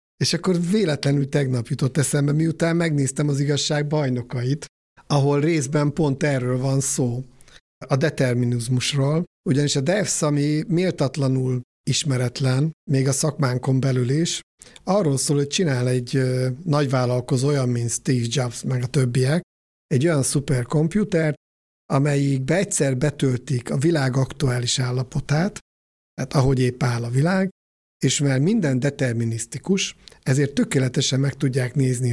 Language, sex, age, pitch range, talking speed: Hungarian, male, 60-79, 125-150 Hz, 125 wpm